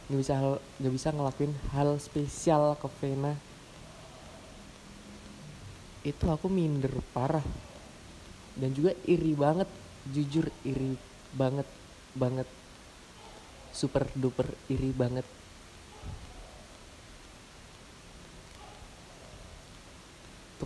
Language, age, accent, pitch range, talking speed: Indonesian, 20-39, native, 110-140 Hz, 80 wpm